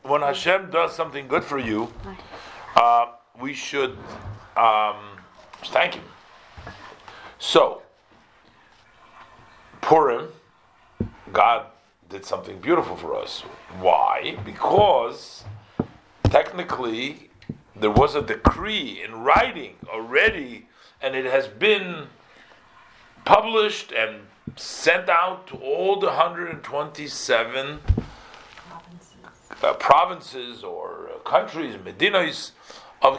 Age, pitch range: 50-69, 115-185 Hz